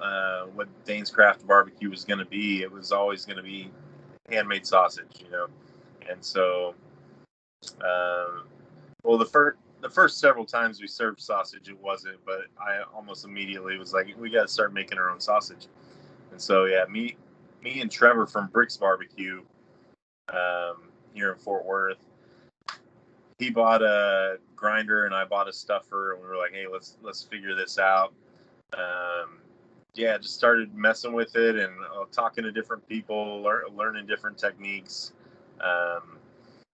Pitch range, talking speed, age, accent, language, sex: 95-110 Hz, 165 wpm, 20-39, American, English, male